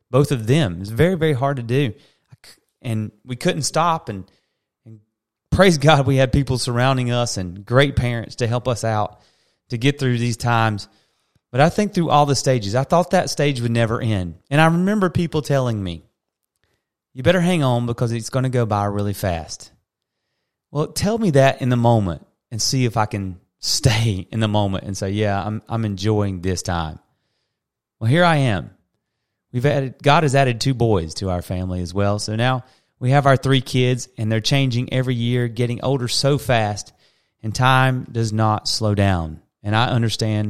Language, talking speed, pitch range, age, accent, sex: English, 195 wpm, 105-135 Hz, 30-49, American, male